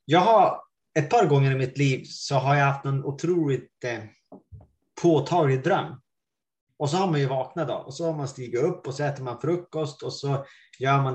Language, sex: Swedish, male